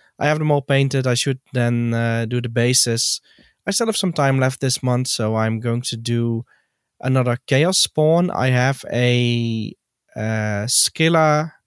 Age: 20-39